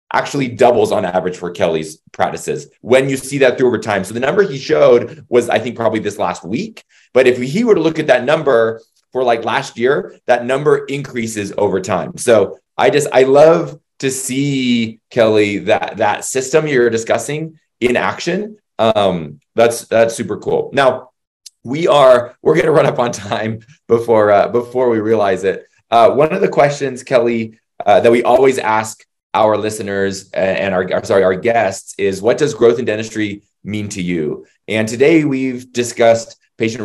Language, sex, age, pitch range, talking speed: English, male, 20-39, 105-130 Hz, 180 wpm